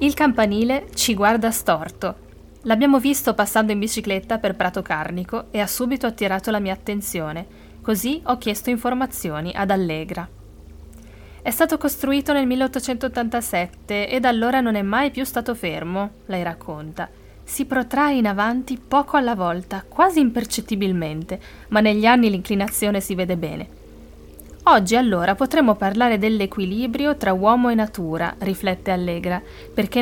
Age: 20-39